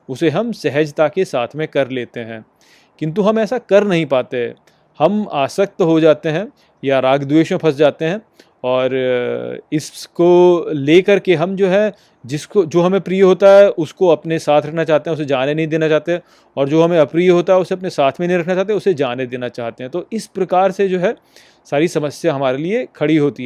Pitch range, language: 140-200 Hz, Hindi